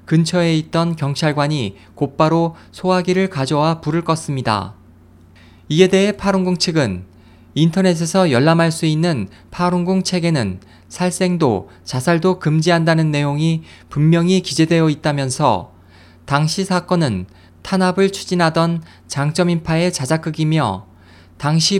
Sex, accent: male, native